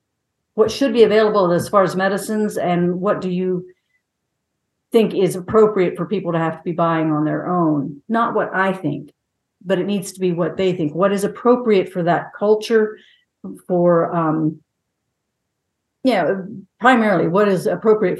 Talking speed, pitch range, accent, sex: 170 wpm, 175-215 Hz, American, female